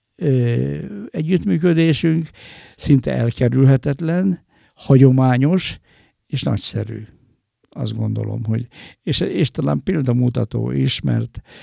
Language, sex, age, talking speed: Hungarian, male, 60-79, 75 wpm